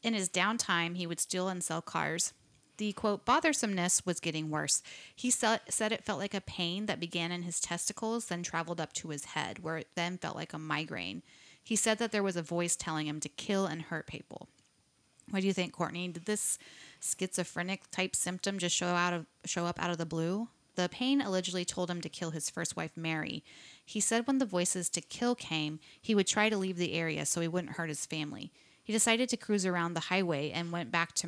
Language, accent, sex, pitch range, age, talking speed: English, American, female, 165-200 Hz, 30-49, 225 wpm